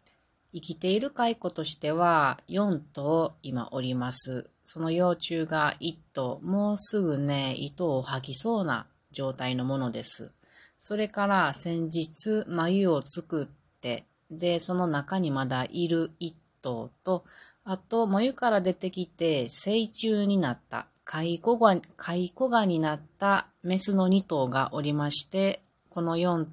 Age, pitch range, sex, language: 30-49, 140-180 Hz, female, Japanese